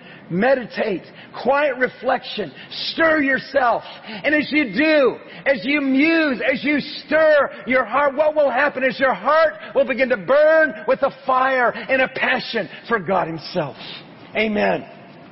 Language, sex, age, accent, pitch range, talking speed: English, male, 40-59, American, 215-265 Hz, 145 wpm